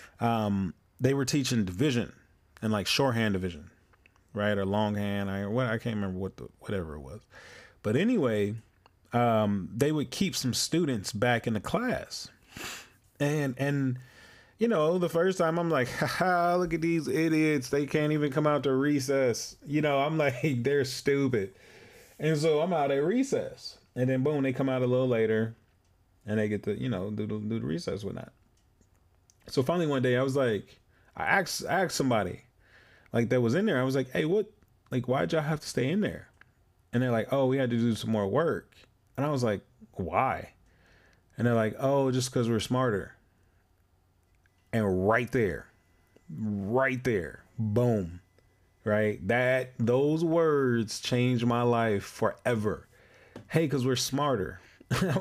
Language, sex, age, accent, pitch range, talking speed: English, male, 30-49, American, 105-140 Hz, 175 wpm